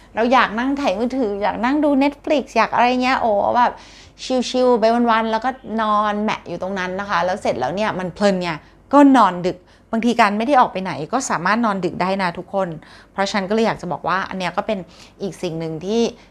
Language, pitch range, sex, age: Thai, 190-250 Hz, female, 30-49